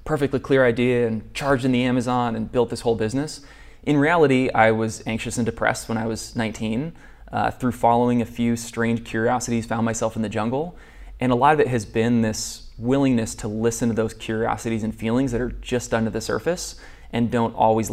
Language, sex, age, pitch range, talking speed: English, male, 20-39, 110-120 Hz, 205 wpm